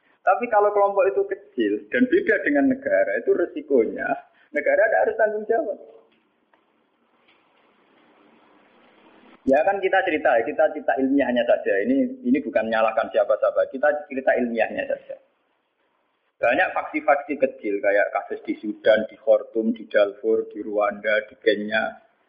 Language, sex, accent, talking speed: Indonesian, male, native, 130 wpm